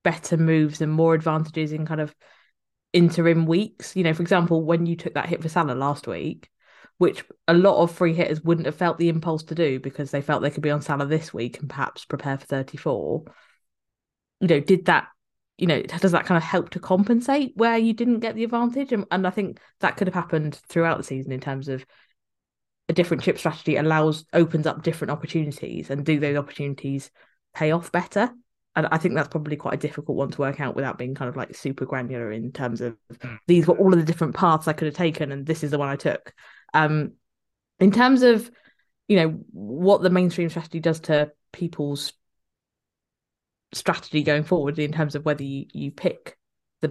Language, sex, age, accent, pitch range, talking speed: English, female, 20-39, British, 145-175 Hz, 210 wpm